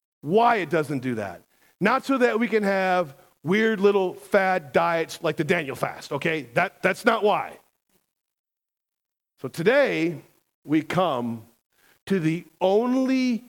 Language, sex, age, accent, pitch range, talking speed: English, male, 40-59, American, 145-195 Hz, 140 wpm